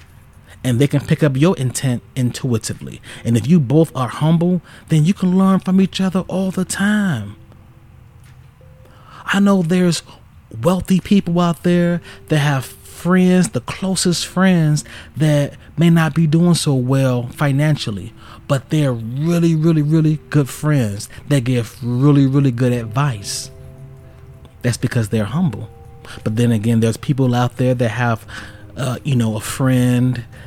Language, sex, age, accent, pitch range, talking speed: English, male, 30-49, American, 115-150 Hz, 150 wpm